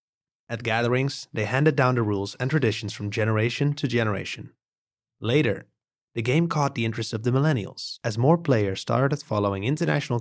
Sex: male